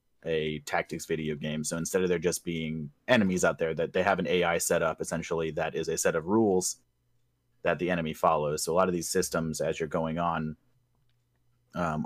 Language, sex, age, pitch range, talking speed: English, male, 30-49, 80-115 Hz, 210 wpm